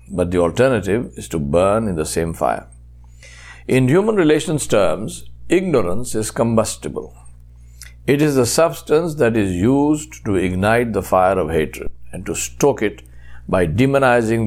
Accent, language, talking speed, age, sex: Indian, English, 150 wpm, 60-79, male